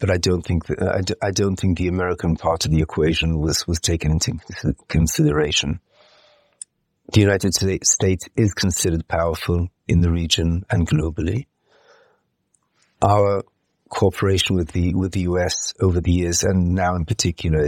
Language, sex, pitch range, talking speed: English, male, 85-100 Hz, 150 wpm